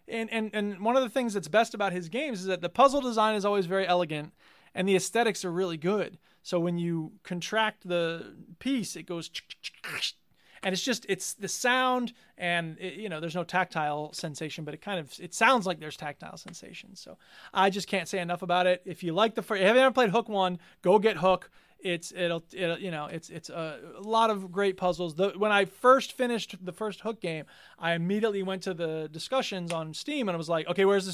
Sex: male